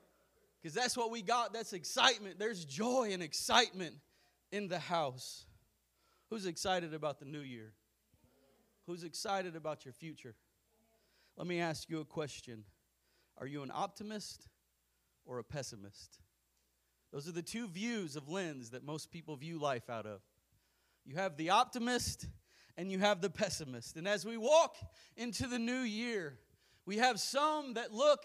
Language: English